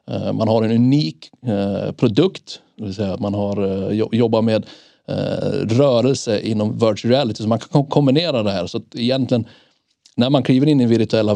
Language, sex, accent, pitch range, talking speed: Swedish, male, native, 110-135 Hz, 175 wpm